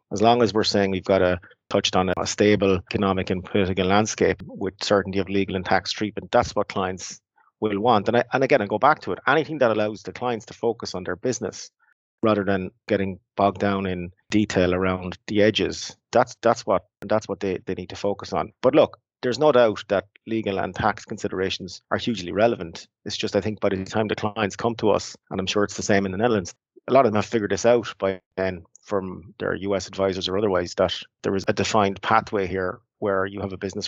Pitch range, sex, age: 95-105 Hz, male, 30-49